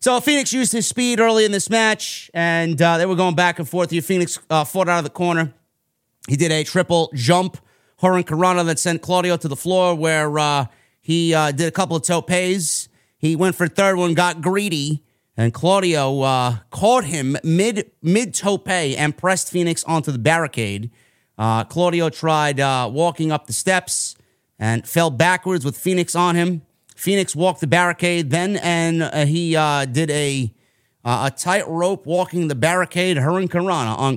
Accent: American